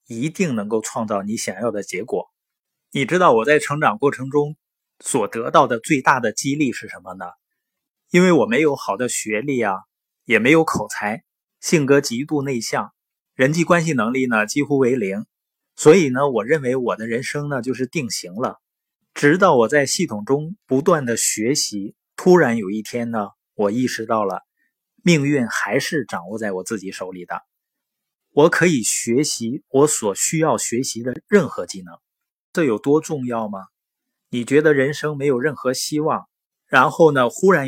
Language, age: Chinese, 20-39